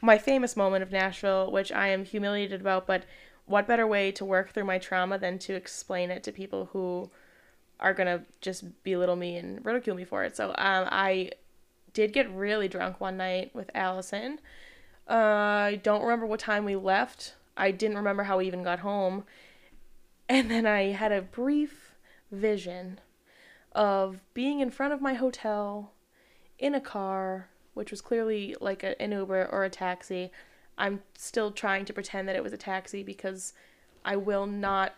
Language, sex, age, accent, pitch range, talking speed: English, female, 10-29, American, 190-215 Hz, 180 wpm